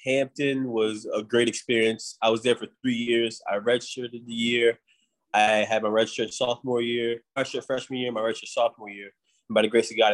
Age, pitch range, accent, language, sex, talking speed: 20-39, 110-135 Hz, American, English, male, 215 wpm